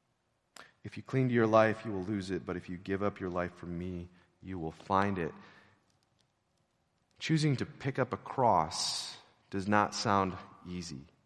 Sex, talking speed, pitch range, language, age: male, 175 wpm, 95-125 Hz, English, 30-49